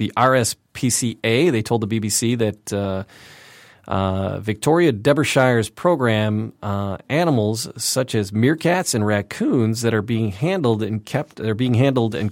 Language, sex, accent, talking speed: English, male, American, 140 wpm